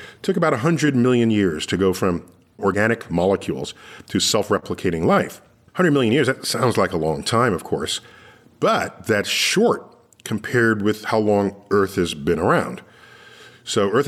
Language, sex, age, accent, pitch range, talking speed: English, male, 50-69, American, 95-140 Hz, 160 wpm